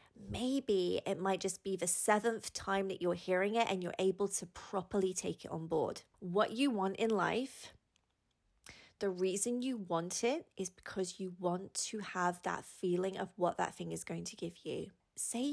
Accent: British